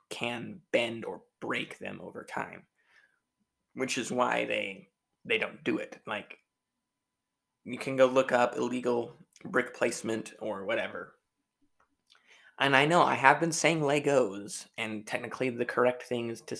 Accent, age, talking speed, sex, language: American, 20-39, 145 wpm, male, English